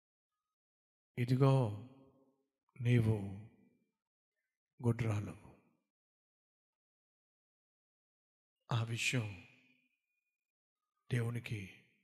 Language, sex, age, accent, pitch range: Telugu, male, 50-69, native, 125-185 Hz